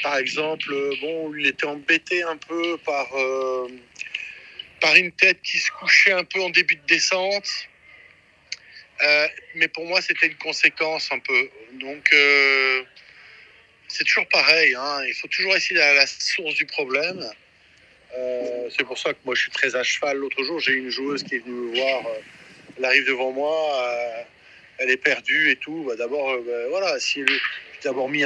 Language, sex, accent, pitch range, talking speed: French, male, French, 135-180 Hz, 185 wpm